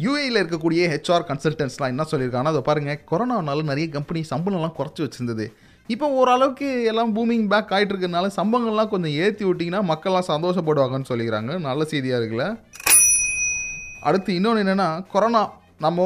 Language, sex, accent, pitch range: Tamil, male, native, 150-200 Hz